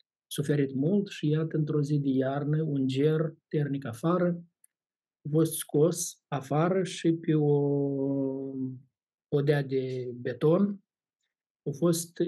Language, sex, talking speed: Romanian, male, 115 wpm